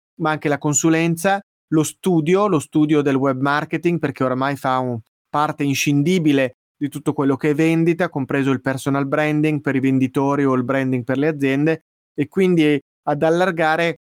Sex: male